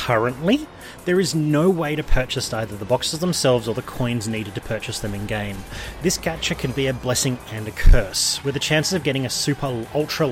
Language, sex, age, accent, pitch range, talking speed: English, male, 30-49, Australian, 110-150 Hz, 210 wpm